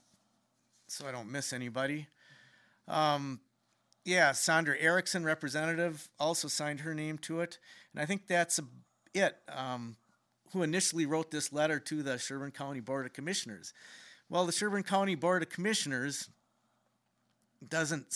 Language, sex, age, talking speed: English, male, 40-59, 140 wpm